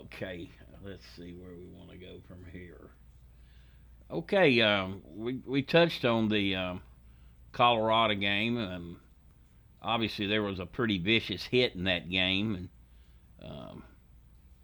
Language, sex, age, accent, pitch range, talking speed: English, male, 60-79, American, 85-110 Hz, 135 wpm